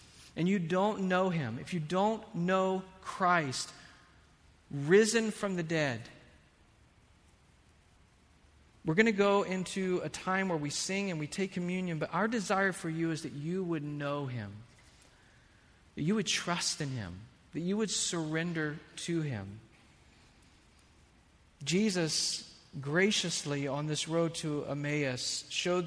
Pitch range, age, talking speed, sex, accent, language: 125-180 Hz, 40-59, 135 wpm, male, American, English